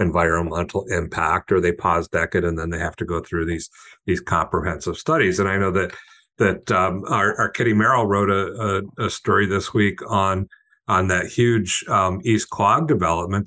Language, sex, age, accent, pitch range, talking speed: English, male, 50-69, American, 90-110 Hz, 185 wpm